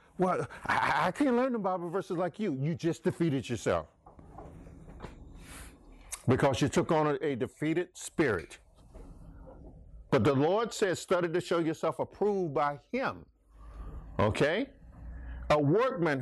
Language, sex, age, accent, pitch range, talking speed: English, male, 50-69, American, 130-190 Hz, 135 wpm